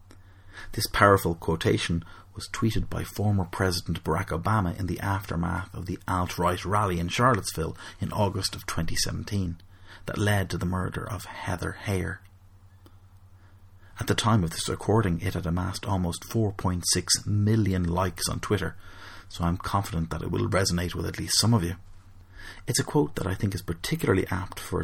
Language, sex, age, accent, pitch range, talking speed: English, male, 30-49, Irish, 90-100 Hz, 165 wpm